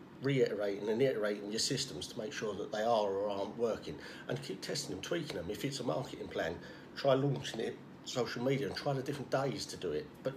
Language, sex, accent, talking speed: English, male, British, 225 wpm